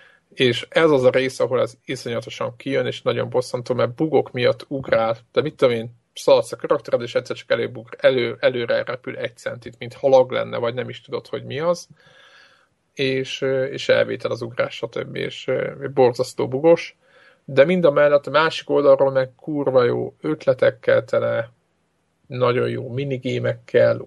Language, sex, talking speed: Hungarian, male, 160 wpm